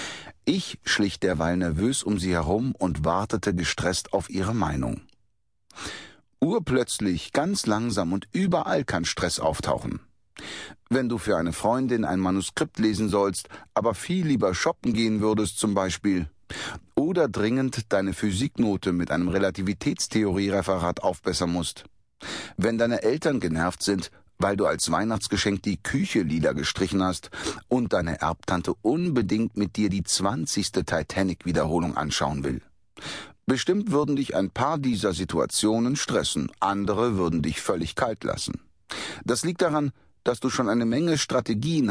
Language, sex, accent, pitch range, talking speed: German, male, German, 90-120 Hz, 135 wpm